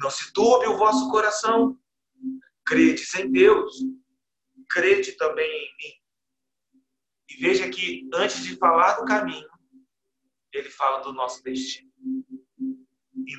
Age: 40-59